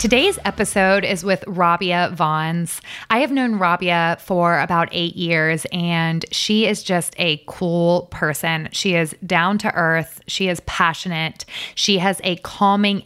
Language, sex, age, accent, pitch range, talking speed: English, female, 20-39, American, 165-185 Hz, 150 wpm